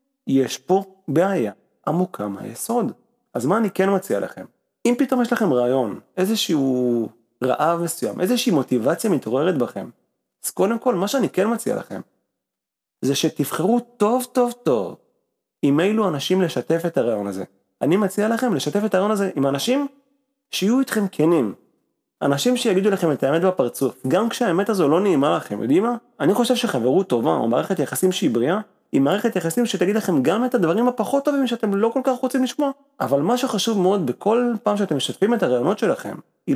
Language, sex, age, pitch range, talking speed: Hebrew, male, 30-49, 165-245 Hz, 175 wpm